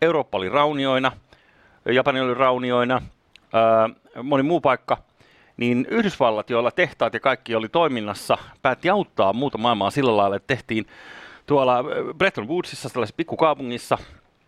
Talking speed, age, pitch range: 130 wpm, 30-49, 105-145 Hz